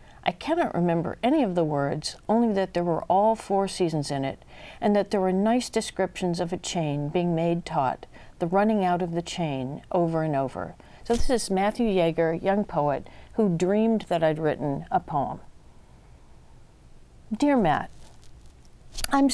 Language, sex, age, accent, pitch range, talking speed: English, female, 50-69, American, 155-210 Hz, 170 wpm